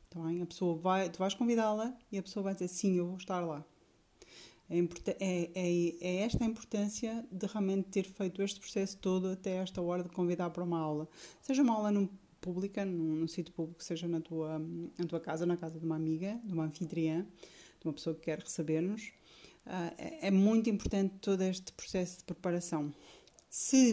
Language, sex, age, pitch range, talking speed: Portuguese, female, 20-39, 165-195 Hz, 190 wpm